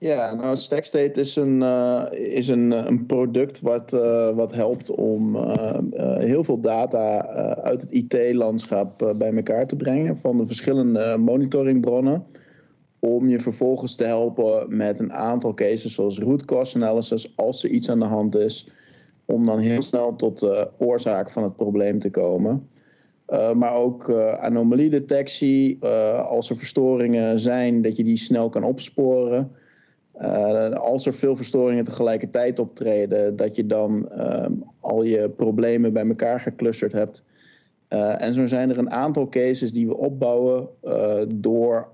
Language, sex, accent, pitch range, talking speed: Dutch, male, Dutch, 115-130 Hz, 160 wpm